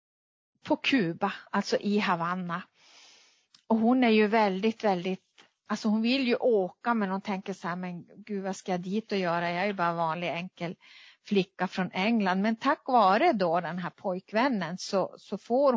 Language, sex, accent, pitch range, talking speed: Swedish, female, native, 180-220 Hz, 185 wpm